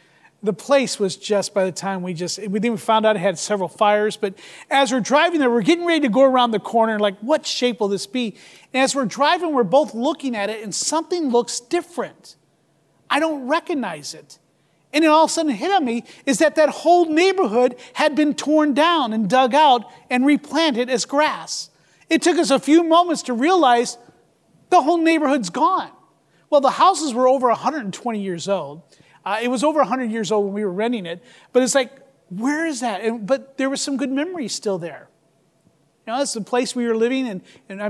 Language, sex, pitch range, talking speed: English, male, 205-280 Hz, 215 wpm